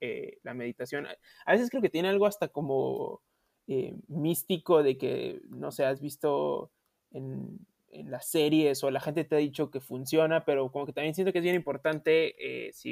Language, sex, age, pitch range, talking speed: Spanish, male, 20-39, 140-165 Hz, 195 wpm